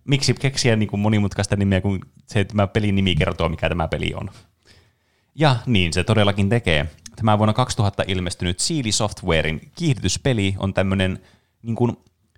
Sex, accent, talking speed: male, native, 155 wpm